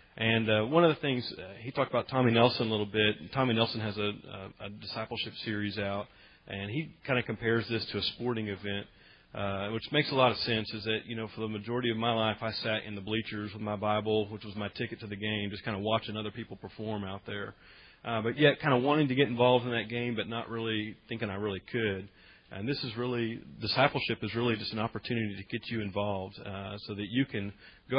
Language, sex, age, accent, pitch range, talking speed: English, male, 40-59, American, 105-120 Hz, 245 wpm